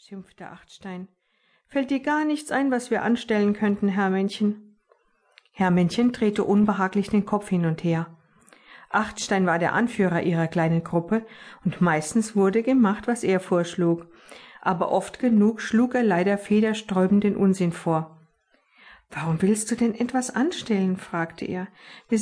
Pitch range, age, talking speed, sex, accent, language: 180-225 Hz, 50-69, 150 wpm, female, German, German